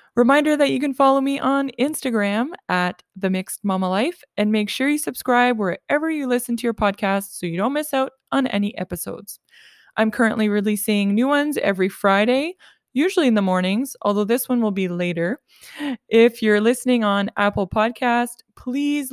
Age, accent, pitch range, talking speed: 20-39, American, 195-260 Hz, 175 wpm